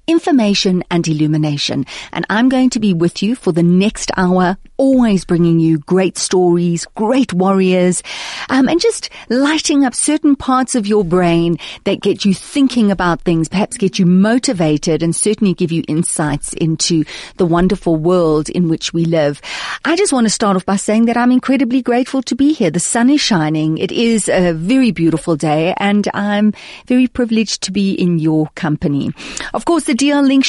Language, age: English, 40-59